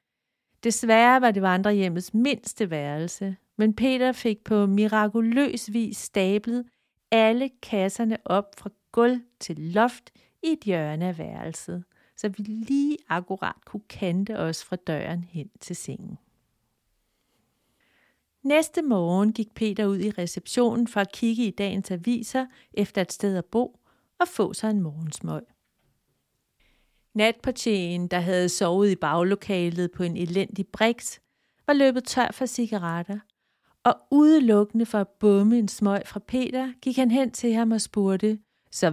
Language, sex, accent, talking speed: Danish, female, native, 140 wpm